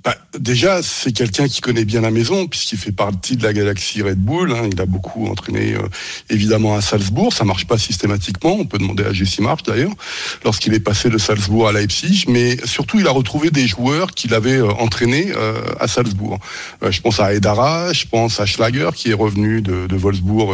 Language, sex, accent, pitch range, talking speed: French, male, French, 105-135 Hz, 215 wpm